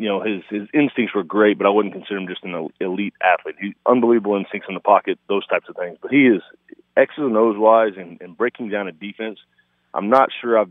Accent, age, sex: American, 30-49, male